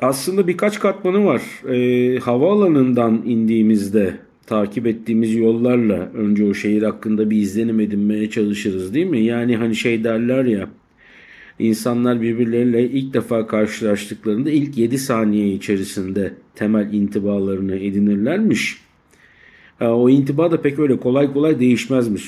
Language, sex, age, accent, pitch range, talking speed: Turkish, male, 50-69, native, 105-125 Hz, 125 wpm